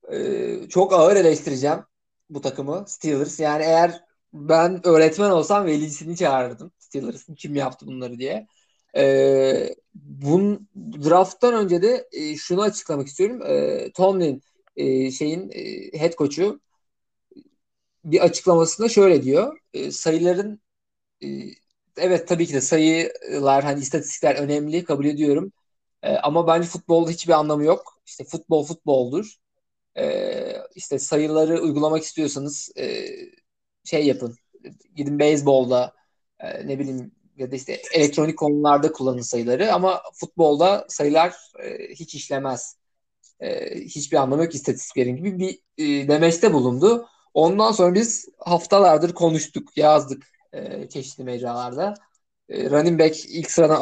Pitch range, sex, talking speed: 140-190 Hz, male, 125 wpm